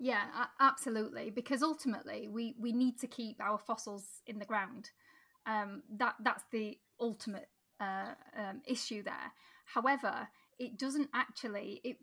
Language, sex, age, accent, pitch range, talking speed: English, female, 10-29, British, 215-255 Hz, 140 wpm